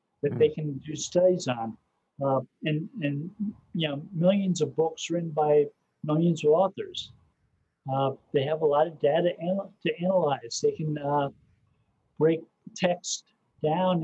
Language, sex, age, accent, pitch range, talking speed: English, male, 50-69, American, 145-180 Hz, 145 wpm